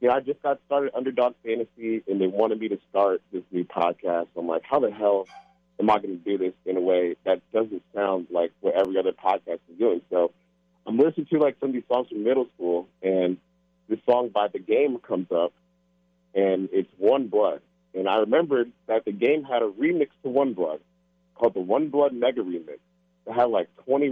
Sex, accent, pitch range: male, American, 85-140 Hz